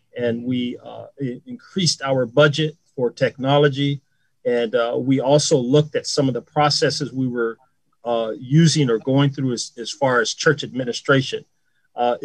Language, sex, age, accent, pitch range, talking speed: English, male, 40-59, American, 125-150 Hz, 155 wpm